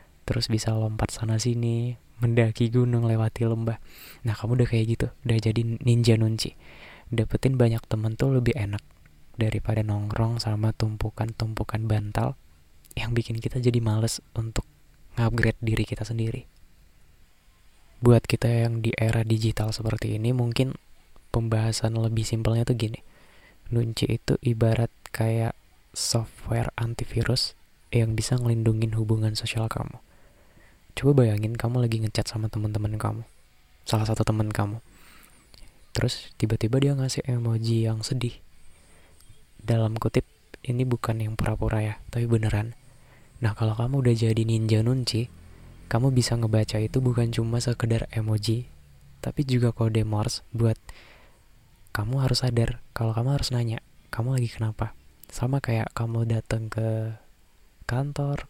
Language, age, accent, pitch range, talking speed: Indonesian, 20-39, native, 110-120 Hz, 130 wpm